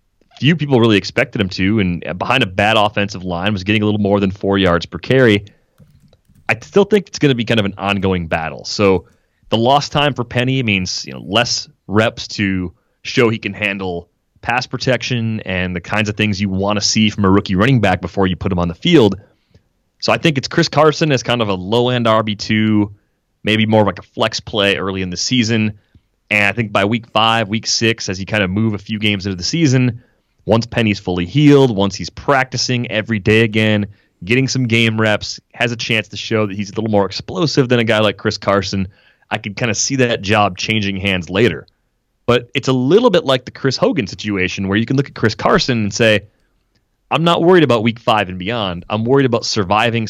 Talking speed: 225 wpm